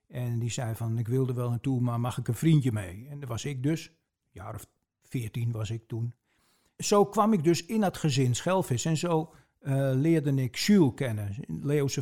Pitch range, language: 125-170 Hz, Dutch